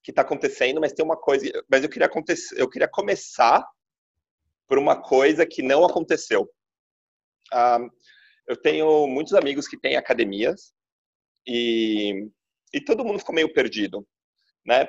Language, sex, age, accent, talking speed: Portuguese, male, 30-49, Brazilian, 145 wpm